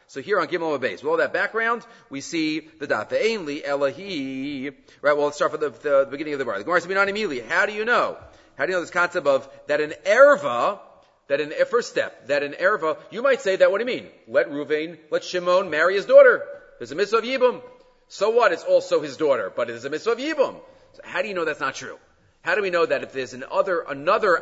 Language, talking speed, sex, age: English, 250 wpm, male, 40-59